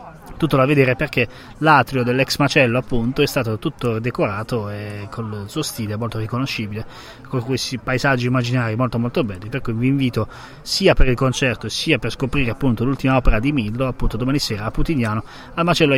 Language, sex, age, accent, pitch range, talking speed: Italian, male, 20-39, native, 120-145 Hz, 180 wpm